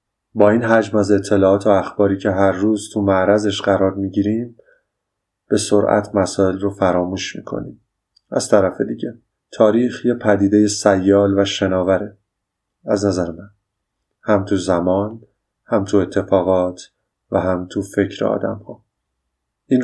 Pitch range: 95-105 Hz